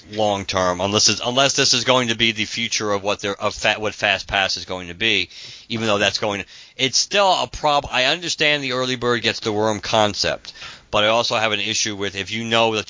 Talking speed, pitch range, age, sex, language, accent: 245 wpm, 105-130 Hz, 50-69, male, English, American